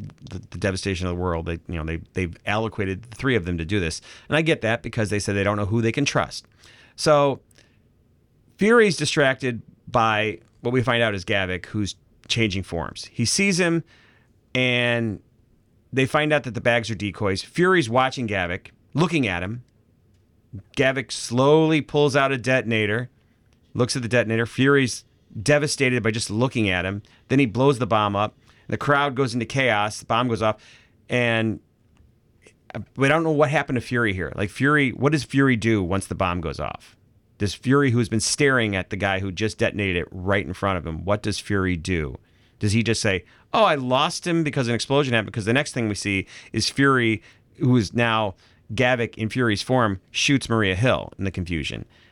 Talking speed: 195 wpm